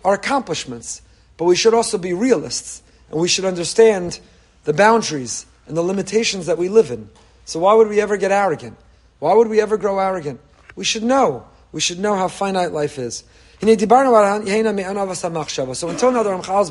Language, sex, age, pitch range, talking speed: English, male, 40-59, 160-210 Hz, 180 wpm